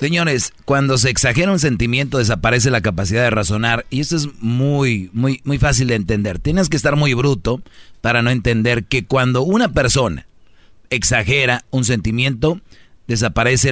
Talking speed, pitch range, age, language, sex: 155 wpm, 110-135 Hz, 40-59, Spanish, male